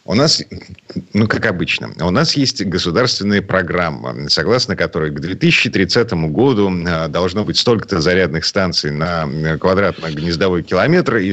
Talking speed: 125 wpm